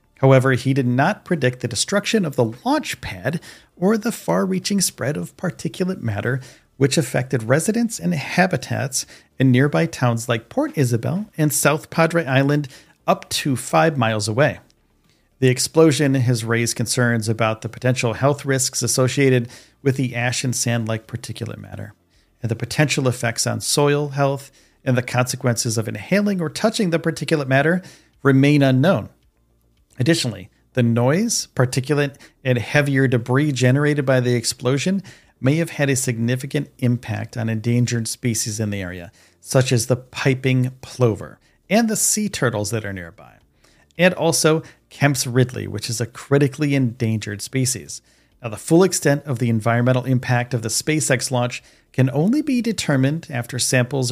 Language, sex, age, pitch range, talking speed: English, male, 40-59, 120-150 Hz, 155 wpm